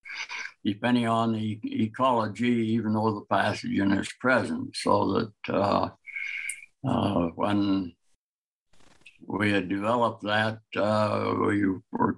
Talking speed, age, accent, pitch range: 110 wpm, 60-79, American, 110-120 Hz